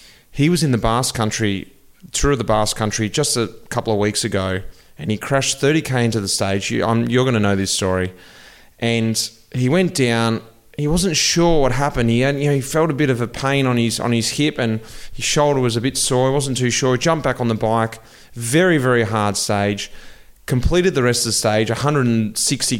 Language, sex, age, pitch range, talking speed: English, male, 30-49, 110-135 Hz, 220 wpm